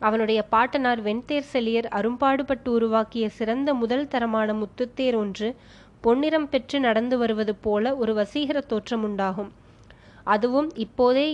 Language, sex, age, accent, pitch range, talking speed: Tamil, female, 20-39, native, 220-265 Hz, 110 wpm